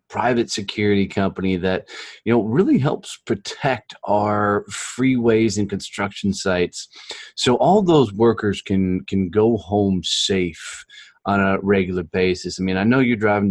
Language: English